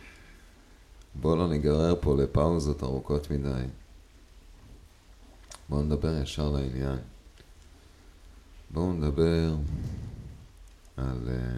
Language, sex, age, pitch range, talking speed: Hebrew, male, 30-49, 70-80 Hz, 75 wpm